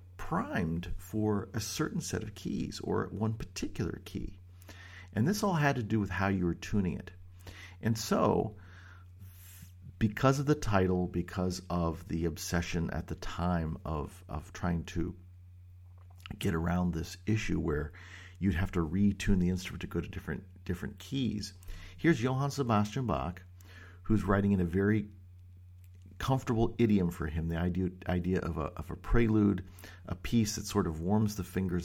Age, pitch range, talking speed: 50-69, 90-100 Hz, 160 wpm